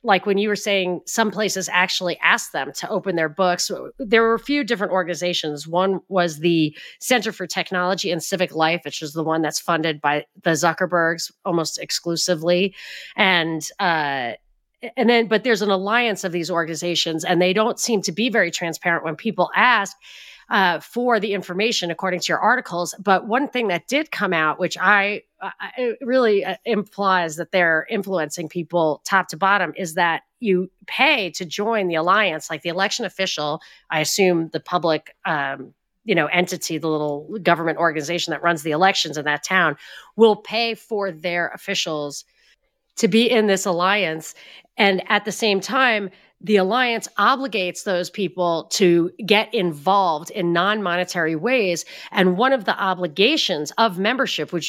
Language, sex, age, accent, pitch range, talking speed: English, female, 30-49, American, 170-210 Hz, 170 wpm